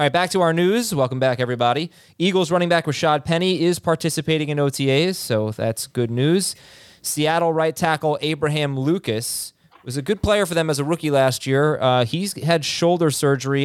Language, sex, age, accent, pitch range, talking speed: English, male, 30-49, American, 120-165 Hz, 190 wpm